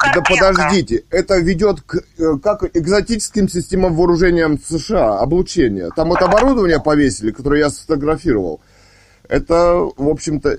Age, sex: 20-39, male